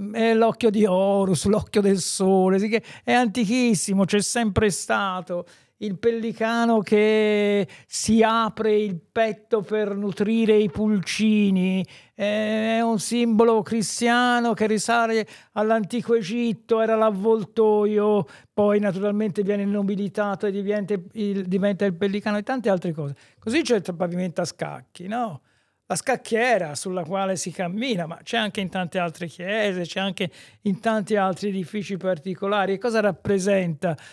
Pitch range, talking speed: 185-225 Hz, 130 wpm